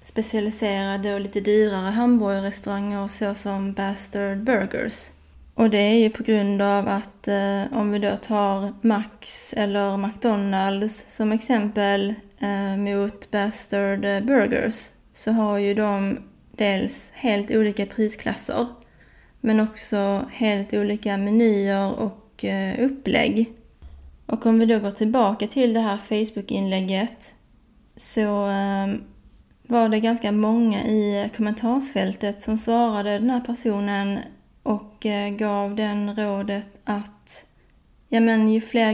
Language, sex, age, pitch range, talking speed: Swedish, female, 20-39, 200-225 Hz, 120 wpm